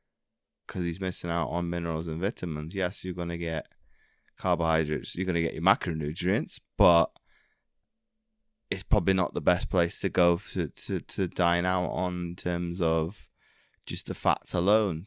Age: 20-39